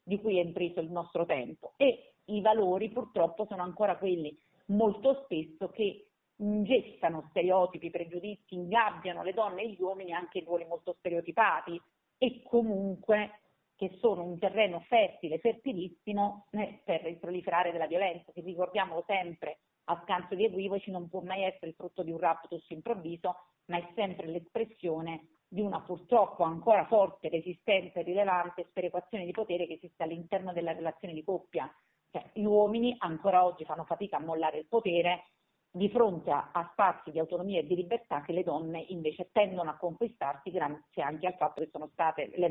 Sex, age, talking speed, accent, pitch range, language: female, 40-59, 170 wpm, native, 165-200 Hz, Italian